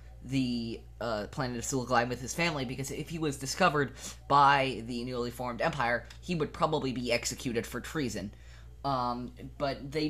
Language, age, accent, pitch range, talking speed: English, 20-39, American, 110-145 Hz, 165 wpm